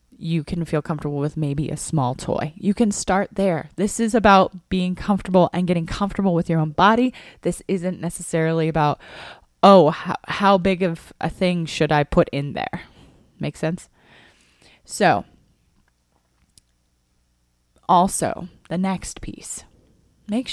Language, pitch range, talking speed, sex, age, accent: English, 155-200 Hz, 145 wpm, female, 20-39, American